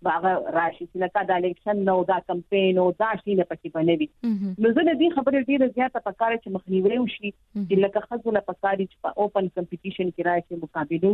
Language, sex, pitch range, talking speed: Urdu, female, 165-200 Hz, 155 wpm